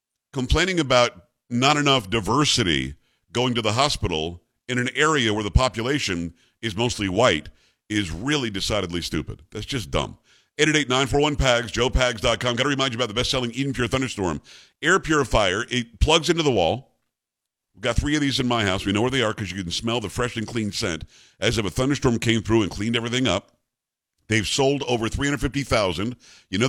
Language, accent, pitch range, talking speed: English, American, 110-135 Hz, 185 wpm